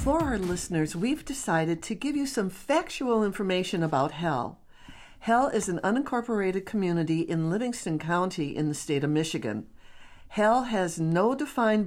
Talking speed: 150 wpm